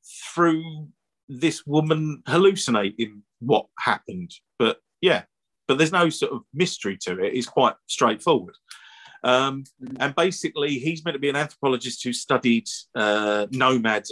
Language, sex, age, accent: English, male, 40-59, British